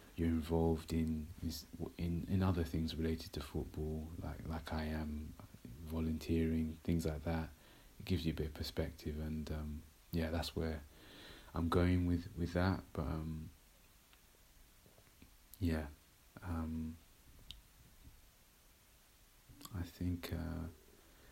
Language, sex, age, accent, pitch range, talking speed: English, male, 30-49, British, 80-85 Hz, 115 wpm